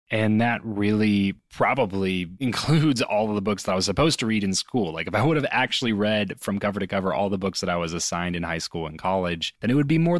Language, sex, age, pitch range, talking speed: English, male, 20-39, 95-115 Hz, 265 wpm